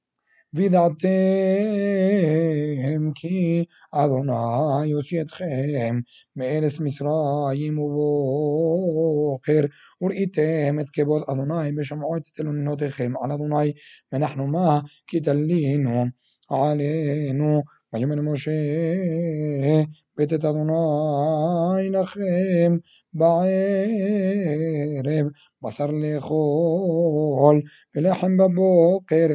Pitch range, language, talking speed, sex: 145-165 Hz, Hebrew, 65 wpm, male